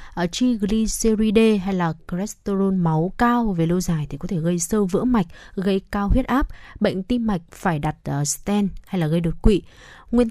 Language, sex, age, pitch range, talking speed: Vietnamese, female, 20-39, 175-225 Hz, 185 wpm